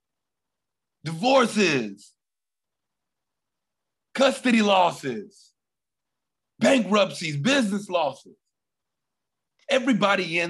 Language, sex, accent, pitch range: English, male, American, 130-195 Hz